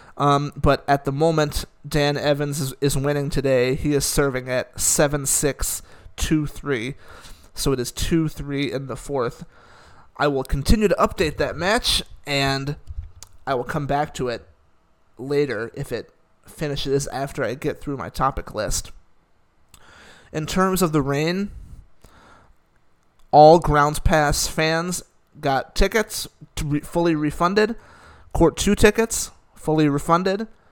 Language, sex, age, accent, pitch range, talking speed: English, male, 30-49, American, 135-160 Hz, 135 wpm